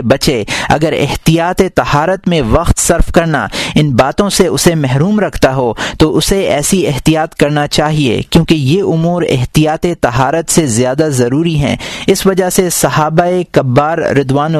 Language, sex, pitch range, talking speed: Urdu, male, 145-180 Hz, 145 wpm